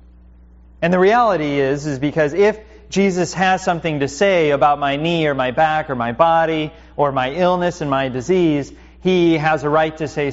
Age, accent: 30-49, American